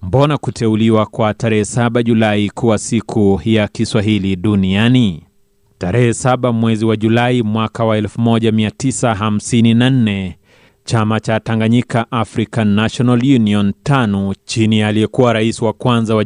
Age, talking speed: 30-49, 120 wpm